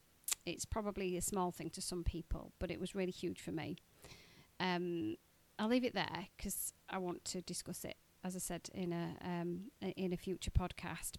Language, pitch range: English, 165-190 Hz